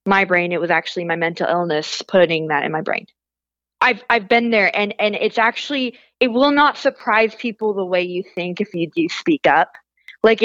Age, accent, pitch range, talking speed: 20-39, American, 190-235 Hz, 205 wpm